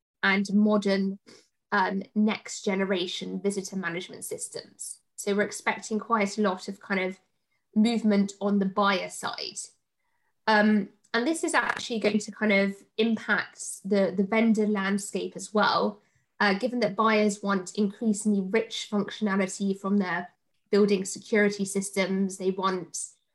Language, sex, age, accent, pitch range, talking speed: English, female, 20-39, British, 195-215 Hz, 135 wpm